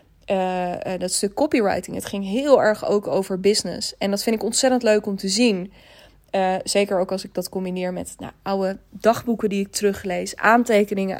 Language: Dutch